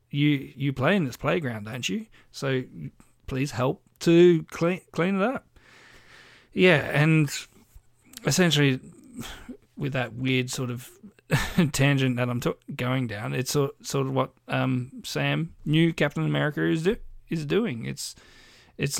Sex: male